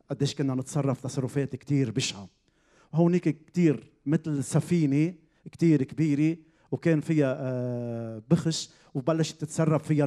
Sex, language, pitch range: male, Arabic, 130-160 Hz